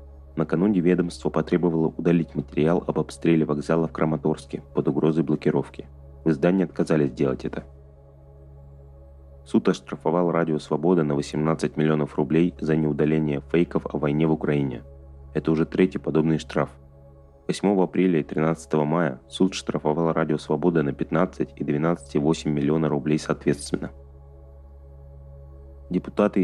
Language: Russian